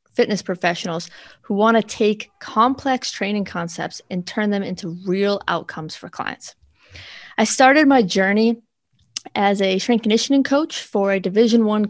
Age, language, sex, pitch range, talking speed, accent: 20-39, English, female, 180-230 Hz, 150 wpm, American